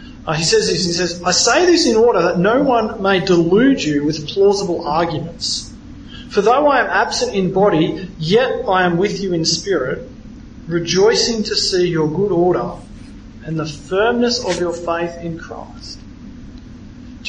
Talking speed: 165 wpm